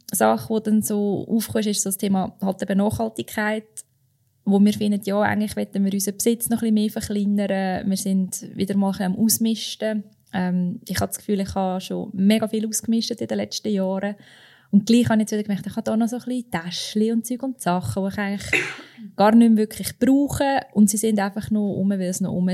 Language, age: German, 20-39